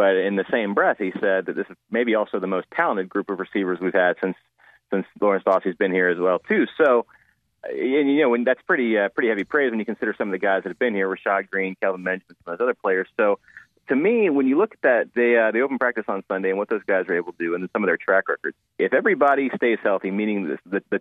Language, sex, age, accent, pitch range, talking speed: English, male, 30-49, American, 95-125 Hz, 270 wpm